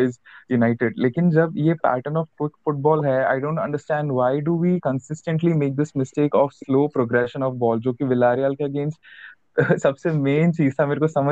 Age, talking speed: 20-39, 160 wpm